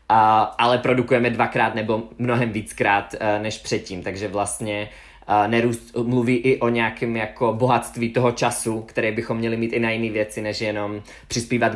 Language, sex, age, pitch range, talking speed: Czech, male, 20-39, 105-125 Hz, 170 wpm